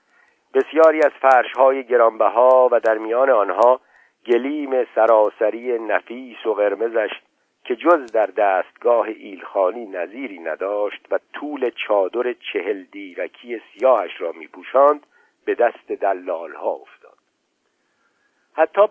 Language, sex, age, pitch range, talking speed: Persian, male, 50-69, 115-180 Hz, 110 wpm